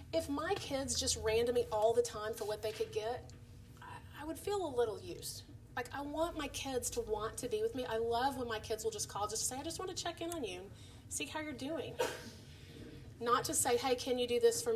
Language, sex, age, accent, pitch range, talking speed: English, female, 30-49, American, 215-330 Hz, 270 wpm